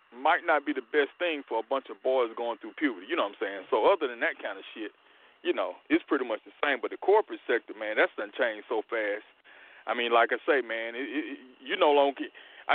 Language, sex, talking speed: English, male, 245 wpm